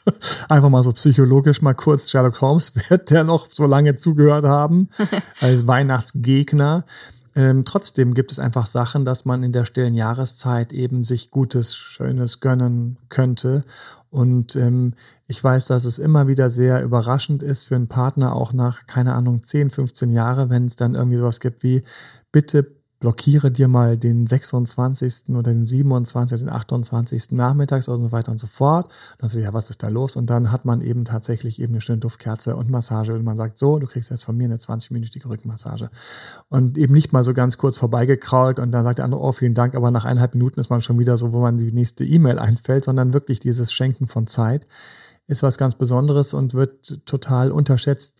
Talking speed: 200 wpm